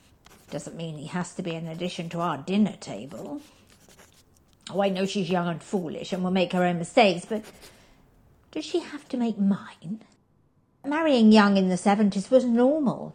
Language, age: English, 50-69